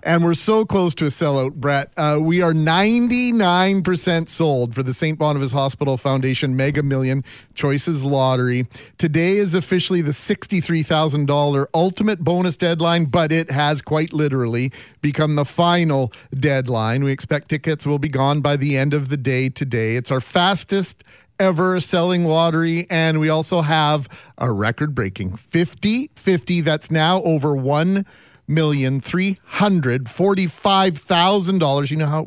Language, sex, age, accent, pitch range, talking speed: English, male, 40-59, American, 140-175 Hz, 150 wpm